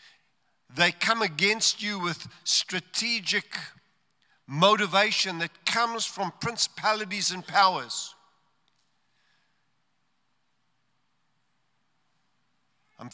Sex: male